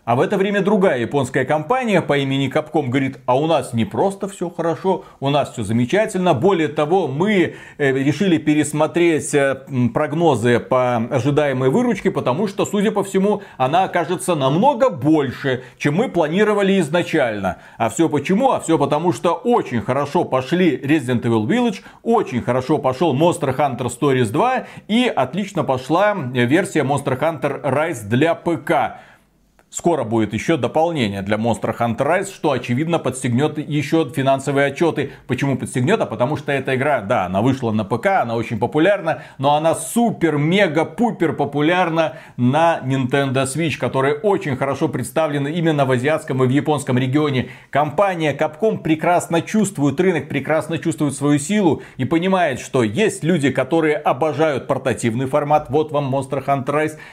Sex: male